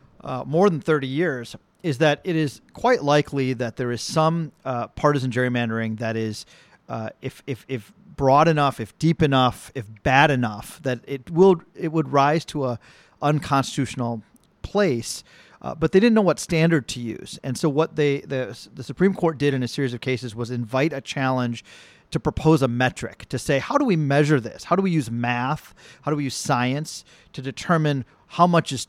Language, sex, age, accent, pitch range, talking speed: English, male, 40-59, American, 125-155 Hz, 195 wpm